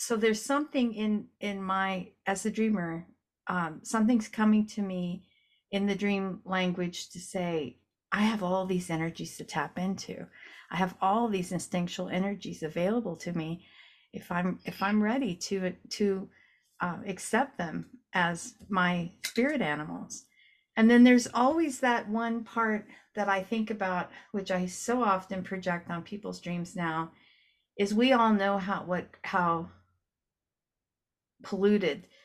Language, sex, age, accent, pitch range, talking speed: English, female, 50-69, American, 180-220 Hz, 145 wpm